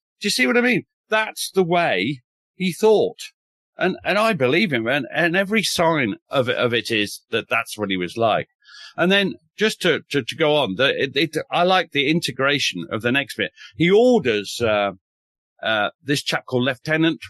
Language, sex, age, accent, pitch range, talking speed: English, male, 40-59, British, 120-195 Hz, 190 wpm